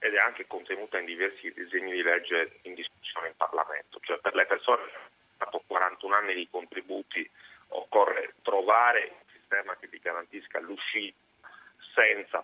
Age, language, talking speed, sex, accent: 30-49, Italian, 160 wpm, male, native